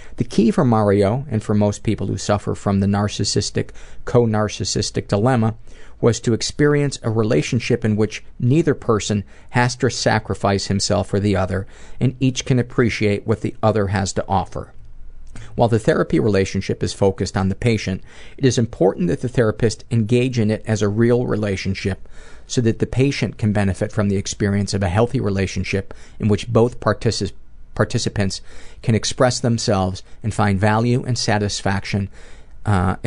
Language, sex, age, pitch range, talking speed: English, male, 50-69, 100-120 Hz, 165 wpm